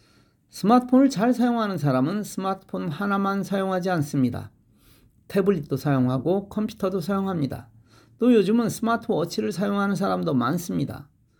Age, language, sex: 40-59, Korean, male